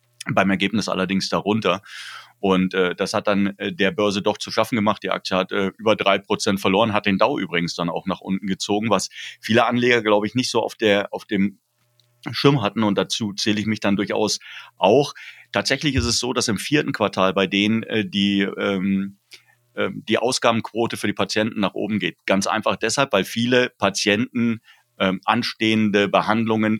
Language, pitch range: German, 95-115 Hz